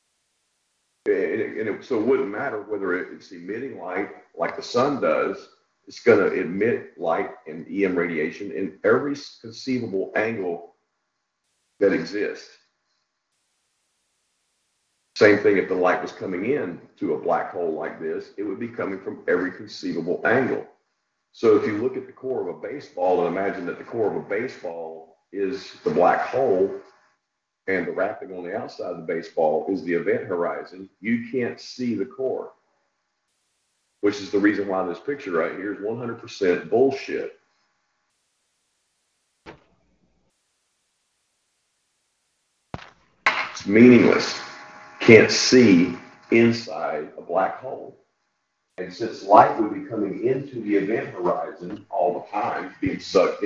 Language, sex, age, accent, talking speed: English, male, 50-69, American, 140 wpm